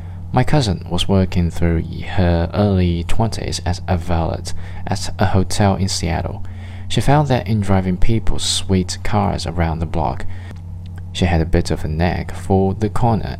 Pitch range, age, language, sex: 90-100 Hz, 20-39, Chinese, male